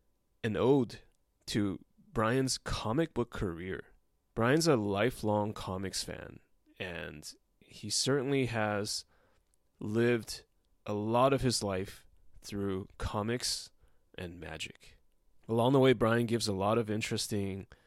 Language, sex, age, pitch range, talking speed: English, male, 20-39, 90-115 Hz, 120 wpm